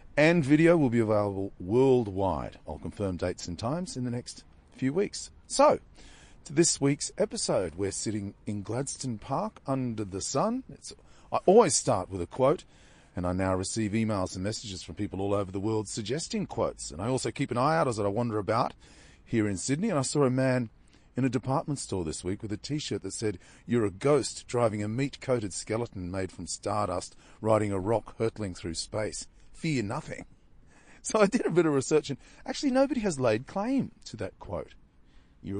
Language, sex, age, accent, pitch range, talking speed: English, male, 40-59, Australian, 95-135 Hz, 195 wpm